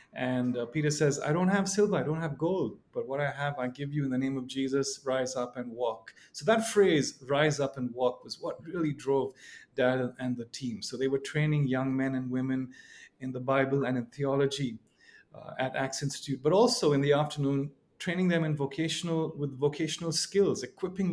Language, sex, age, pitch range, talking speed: English, male, 30-49, 130-150 Hz, 210 wpm